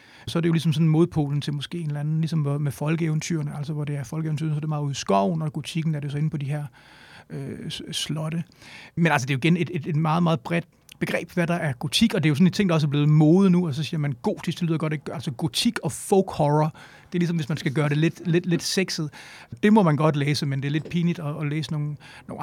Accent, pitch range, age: native, 150-175 Hz, 30-49